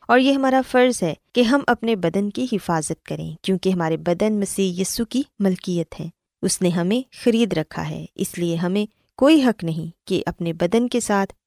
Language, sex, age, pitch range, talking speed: Urdu, female, 20-39, 175-235 Hz, 200 wpm